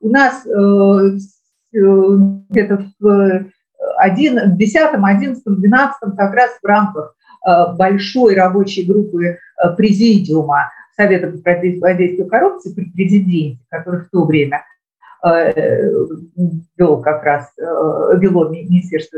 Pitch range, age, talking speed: 185-230 Hz, 50-69, 90 wpm